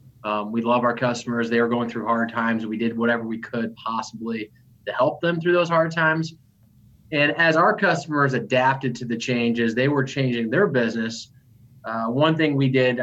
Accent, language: American, English